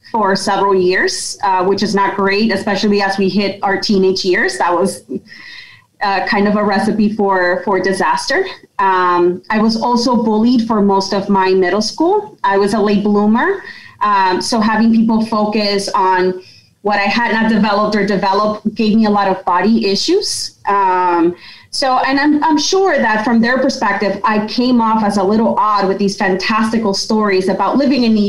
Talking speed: 180 wpm